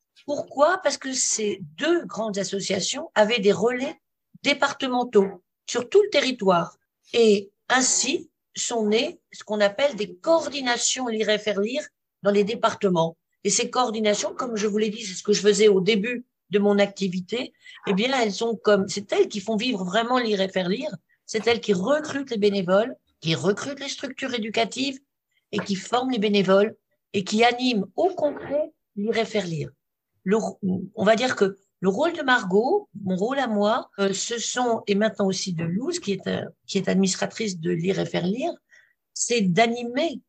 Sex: female